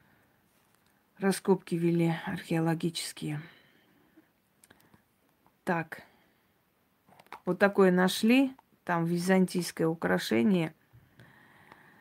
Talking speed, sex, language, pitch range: 50 wpm, female, Russian, 175-215 Hz